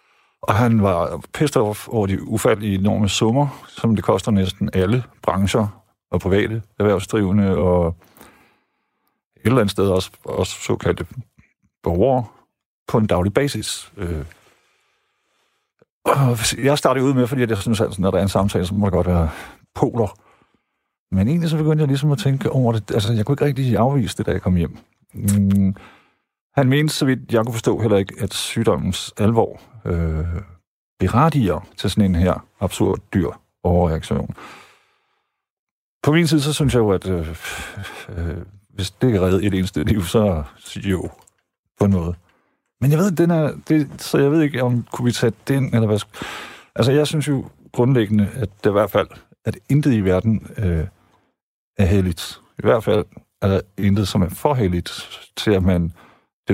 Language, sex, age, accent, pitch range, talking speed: Danish, male, 50-69, native, 95-140 Hz, 170 wpm